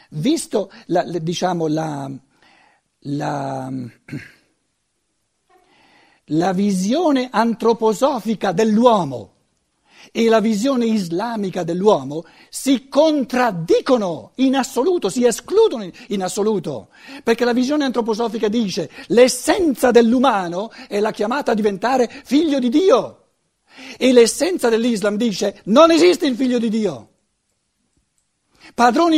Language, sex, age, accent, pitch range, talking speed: Italian, male, 60-79, native, 200-270 Hz, 95 wpm